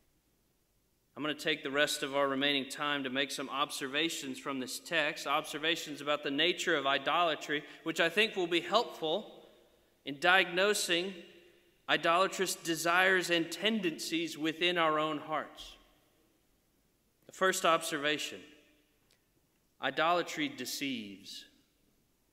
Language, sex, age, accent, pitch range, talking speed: English, male, 30-49, American, 150-185 Hz, 120 wpm